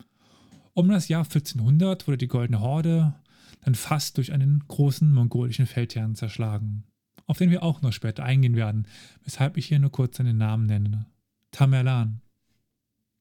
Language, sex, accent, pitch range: German, male, German, 115-145 Hz